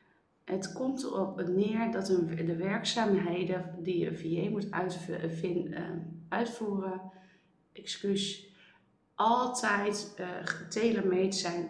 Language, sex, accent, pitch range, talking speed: Dutch, female, Dutch, 175-210 Hz, 80 wpm